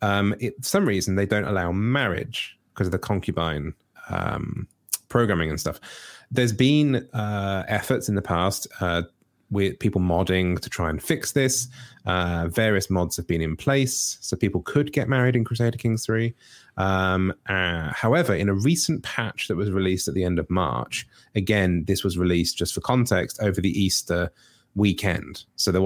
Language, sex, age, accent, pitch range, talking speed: English, male, 30-49, British, 90-115 Hz, 175 wpm